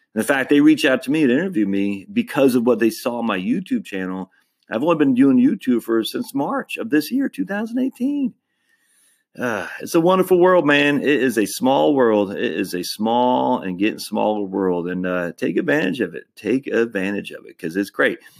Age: 40-59